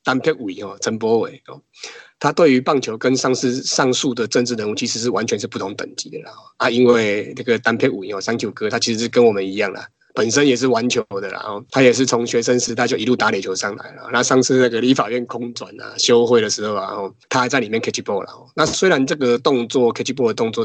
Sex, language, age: male, Chinese, 20-39